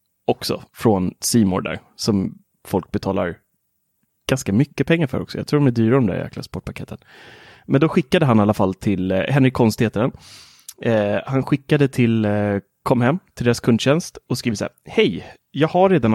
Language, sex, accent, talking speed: Swedish, male, native, 185 wpm